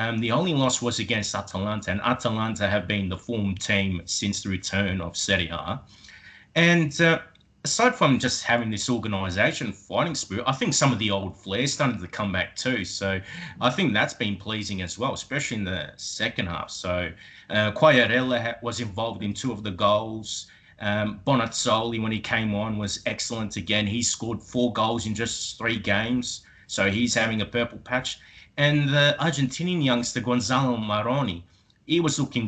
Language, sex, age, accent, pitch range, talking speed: English, male, 30-49, Australian, 100-125 Hz, 180 wpm